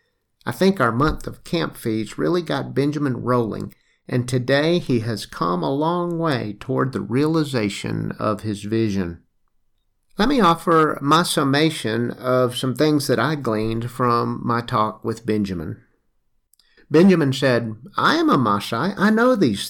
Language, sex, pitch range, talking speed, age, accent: English, male, 115-165 Hz, 150 wpm, 50-69, American